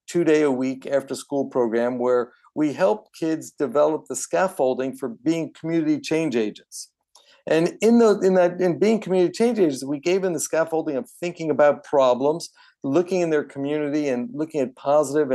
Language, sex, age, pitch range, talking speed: English, male, 50-69, 130-185 Hz, 180 wpm